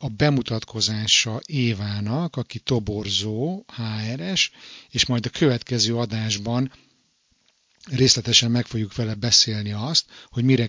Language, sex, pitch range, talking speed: Hungarian, male, 110-130 Hz, 105 wpm